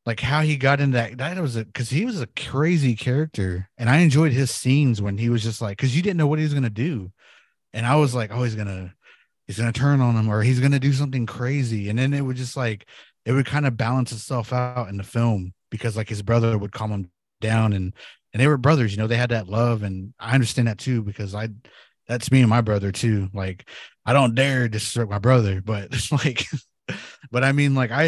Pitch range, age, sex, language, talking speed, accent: 105-130 Hz, 20-39, male, English, 245 wpm, American